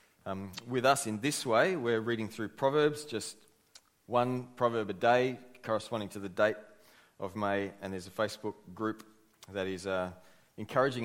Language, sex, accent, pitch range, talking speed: English, male, Australian, 95-115 Hz, 165 wpm